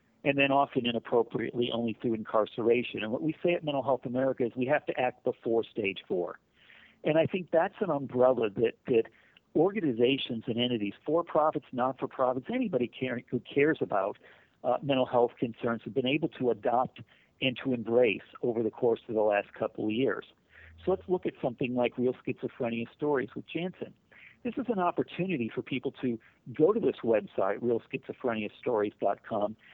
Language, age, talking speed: English, 50-69, 175 wpm